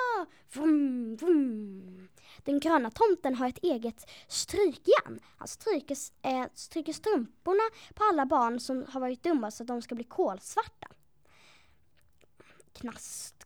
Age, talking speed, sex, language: 10-29, 105 wpm, female, Swedish